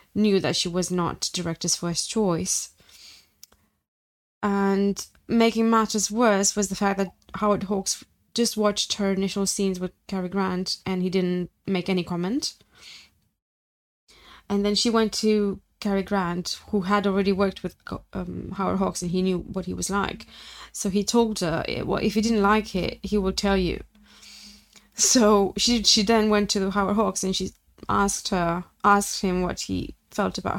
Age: 20-39